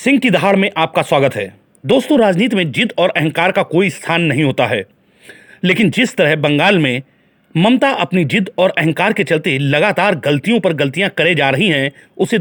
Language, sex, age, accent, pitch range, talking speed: Hindi, male, 40-59, native, 145-190 Hz, 195 wpm